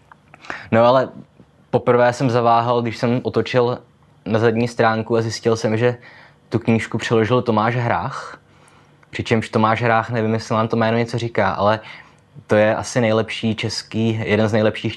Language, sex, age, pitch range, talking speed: Czech, male, 20-39, 100-120 Hz, 155 wpm